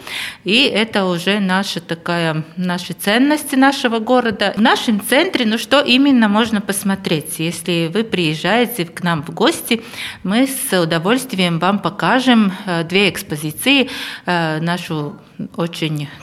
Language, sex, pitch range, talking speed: Russian, female, 170-225 Hz, 115 wpm